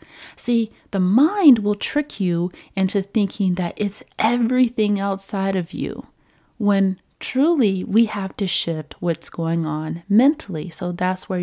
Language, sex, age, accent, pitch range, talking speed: English, female, 30-49, American, 175-230 Hz, 140 wpm